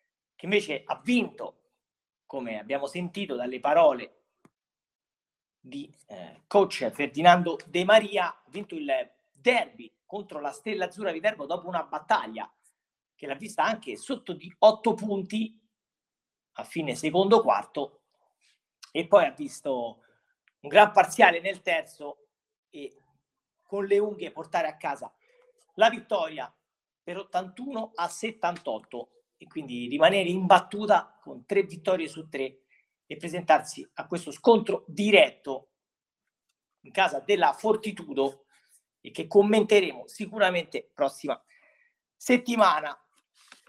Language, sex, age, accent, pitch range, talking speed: Italian, male, 40-59, native, 175-230 Hz, 120 wpm